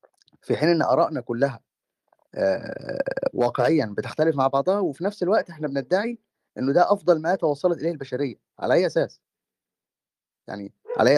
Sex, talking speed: male, 145 wpm